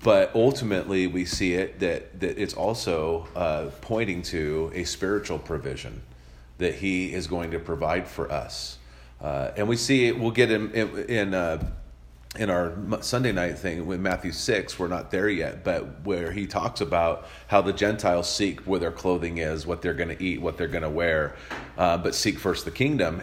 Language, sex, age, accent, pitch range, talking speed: English, male, 40-59, American, 85-105 Hz, 190 wpm